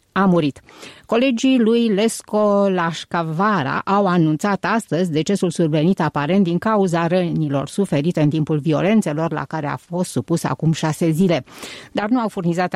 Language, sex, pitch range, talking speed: Romanian, female, 150-195 Hz, 145 wpm